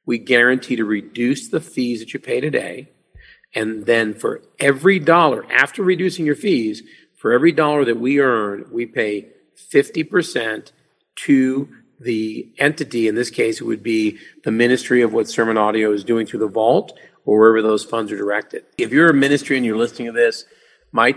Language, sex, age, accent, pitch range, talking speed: English, male, 40-59, American, 110-155 Hz, 185 wpm